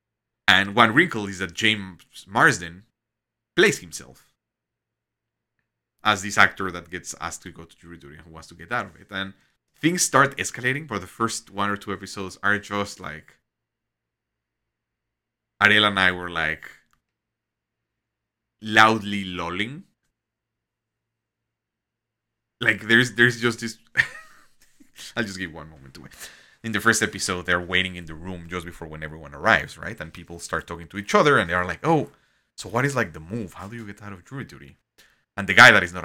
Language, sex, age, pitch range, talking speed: English, male, 30-49, 85-110 Hz, 175 wpm